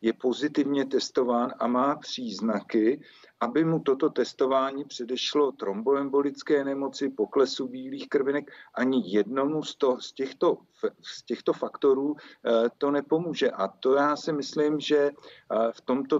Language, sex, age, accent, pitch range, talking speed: Czech, male, 50-69, native, 120-145 Hz, 120 wpm